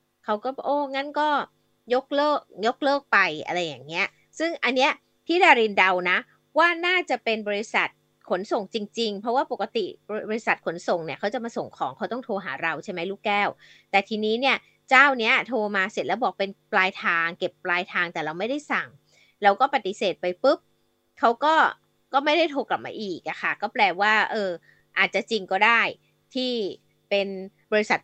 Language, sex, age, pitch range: Thai, female, 20-39, 200-275 Hz